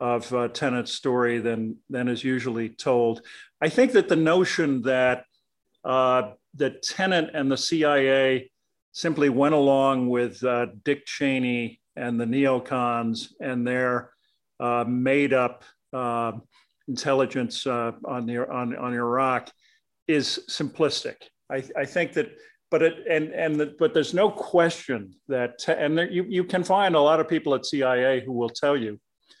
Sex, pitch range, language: male, 120-145 Hz, English